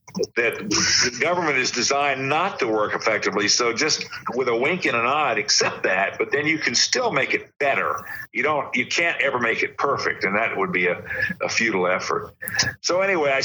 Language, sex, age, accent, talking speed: English, male, 50-69, American, 205 wpm